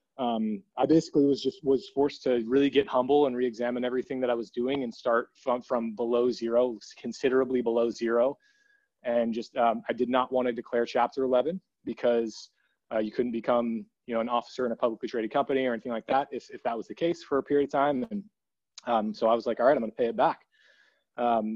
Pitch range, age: 115-135 Hz, 20-39